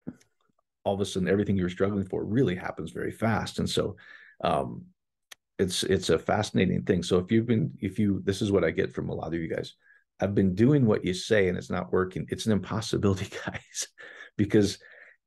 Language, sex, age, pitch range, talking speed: English, male, 40-59, 90-105 Hz, 205 wpm